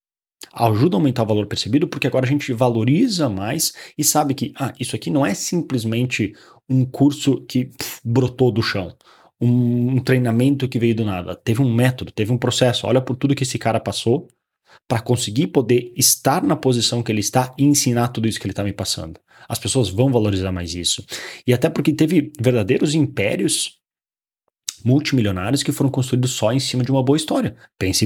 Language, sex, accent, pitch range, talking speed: Portuguese, male, Brazilian, 110-140 Hz, 190 wpm